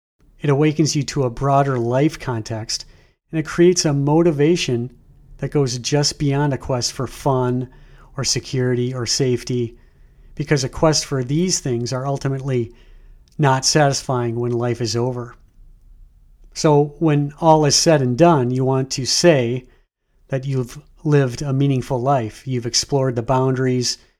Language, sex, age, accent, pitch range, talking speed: English, male, 40-59, American, 125-145 Hz, 150 wpm